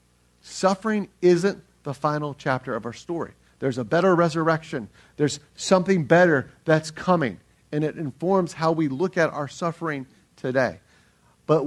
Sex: male